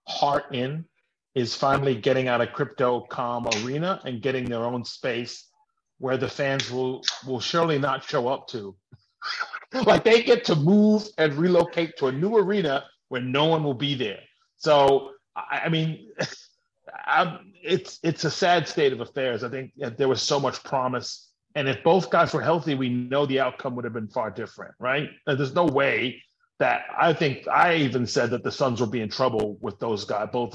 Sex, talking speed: male, 185 wpm